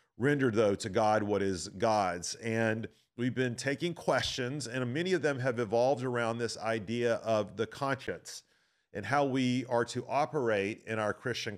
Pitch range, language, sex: 105-135 Hz, English, male